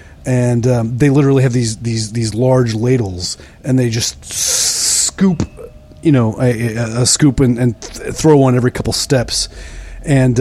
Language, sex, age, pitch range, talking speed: English, male, 30-49, 115-135 Hz, 165 wpm